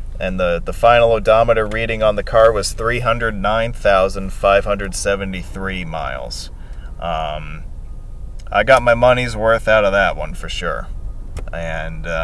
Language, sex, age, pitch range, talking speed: English, male, 20-39, 80-110 Hz, 125 wpm